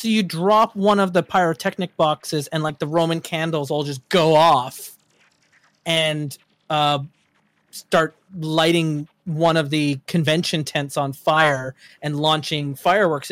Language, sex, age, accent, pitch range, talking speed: English, male, 30-49, American, 170-235 Hz, 140 wpm